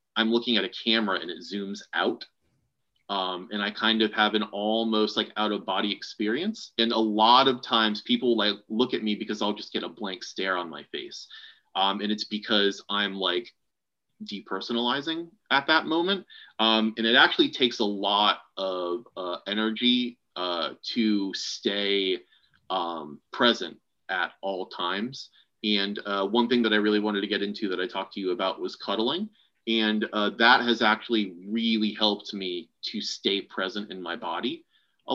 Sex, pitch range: male, 100-115 Hz